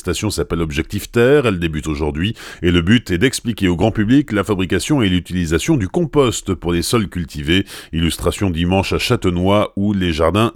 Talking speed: 180 wpm